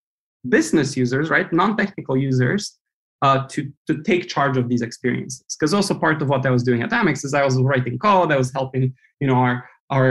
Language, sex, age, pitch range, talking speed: English, male, 20-39, 130-160 Hz, 210 wpm